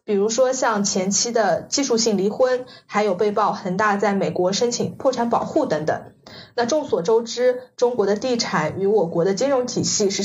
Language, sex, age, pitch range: Chinese, female, 20-39, 200-255 Hz